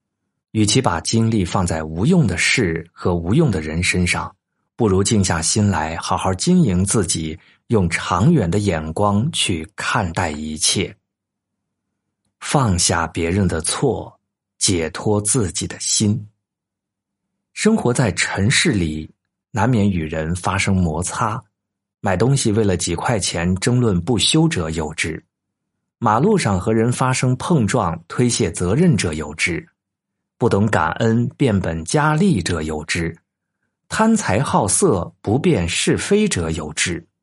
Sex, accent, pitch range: male, native, 85-115 Hz